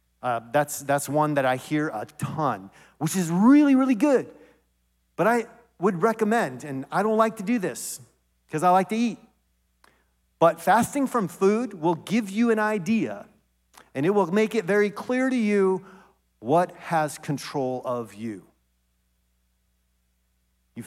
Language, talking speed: English, 155 wpm